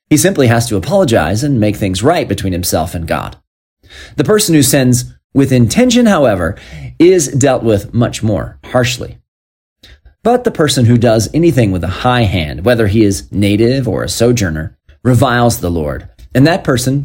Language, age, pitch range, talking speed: English, 30-49, 95-140 Hz, 175 wpm